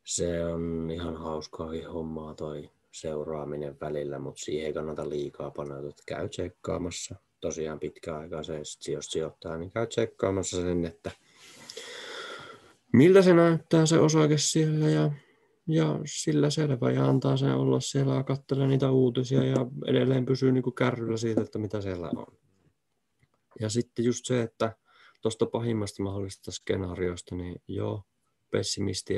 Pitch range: 85-115 Hz